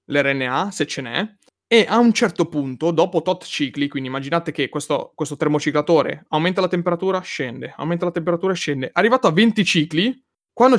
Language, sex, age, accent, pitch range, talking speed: Italian, male, 30-49, native, 145-190 Hz, 170 wpm